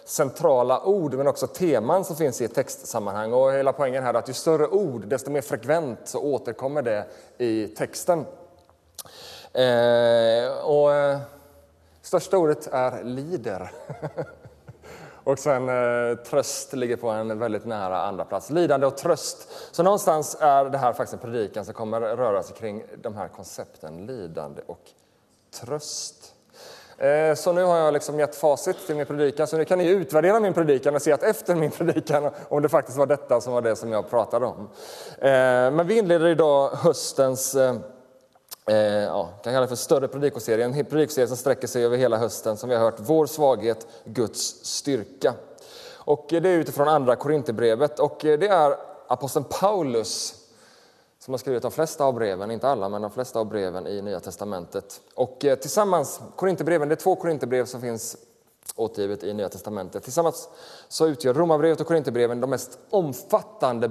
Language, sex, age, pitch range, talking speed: Swedish, male, 30-49, 120-160 Hz, 165 wpm